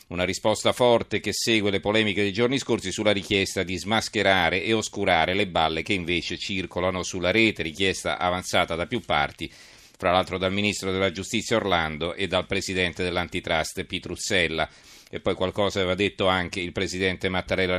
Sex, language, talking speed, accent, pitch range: male, Italian, 165 wpm, native, 95-110 Hz